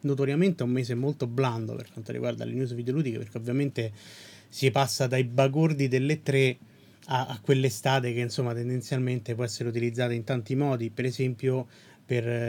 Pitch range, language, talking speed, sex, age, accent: 120-140 Hz, Italian, 170 wpm, male, 30-49, native